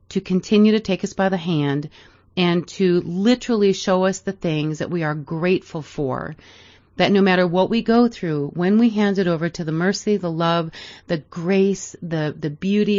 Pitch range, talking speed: 155-195 Hz, 195 wpm